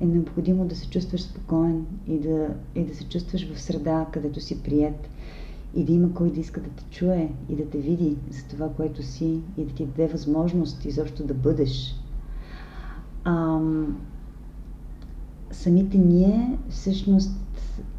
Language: Bulgarian